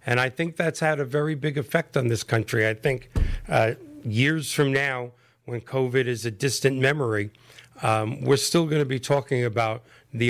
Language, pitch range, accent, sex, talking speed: English, 115-140 Hz, American, male, 190 wpm